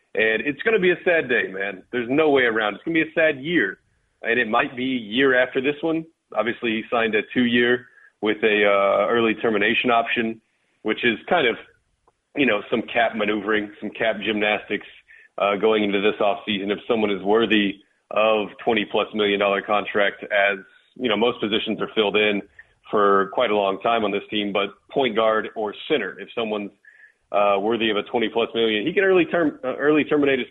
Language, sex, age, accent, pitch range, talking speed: English, male, 30-49, American, 105-135 Hz, 205 wpm